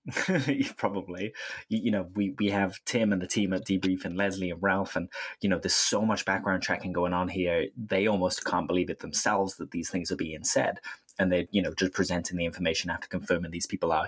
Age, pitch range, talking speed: 20-39, 90-100 Hz, 220 wpm